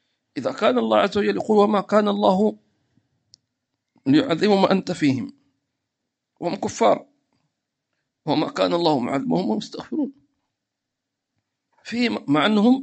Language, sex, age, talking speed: English, male, 50-69, 95 wpm